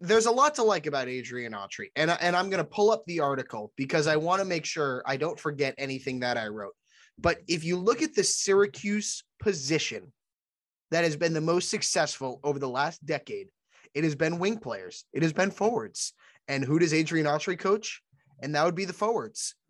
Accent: American